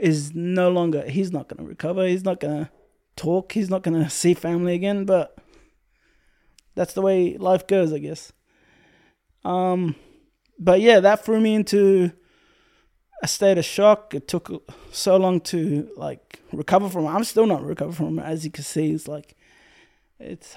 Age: 20-39